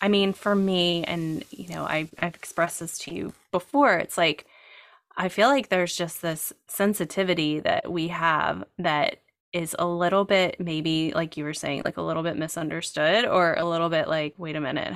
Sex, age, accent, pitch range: female, 20-39, American, 160-185 Hz